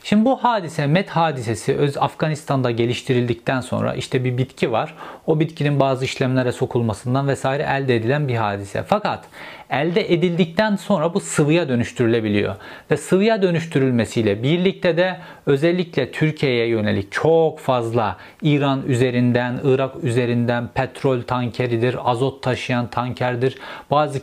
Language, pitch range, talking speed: Turkish, 125-160 Hz, 125 wpm